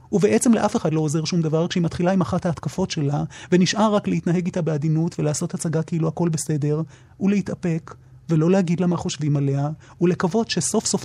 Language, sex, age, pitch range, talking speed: Hebrew, male, 30-49, 160-195 Hz, 175 wpm